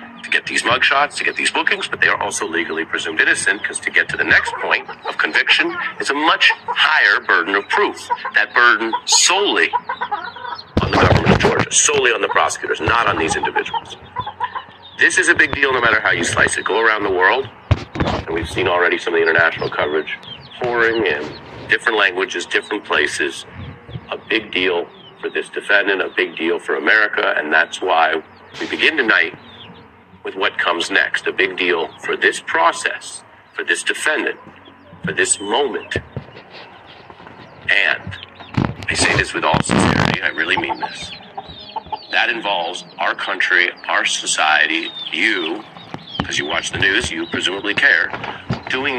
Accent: American